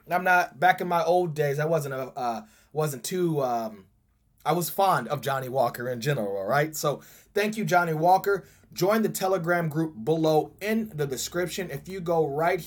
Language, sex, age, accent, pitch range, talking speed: English, male, 30-49, American, 150-185 Hz, 195 wpm